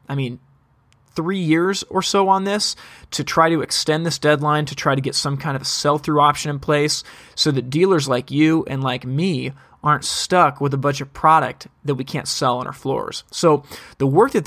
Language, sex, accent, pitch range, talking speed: English, male, American, 135-165 Hz, 210 wpm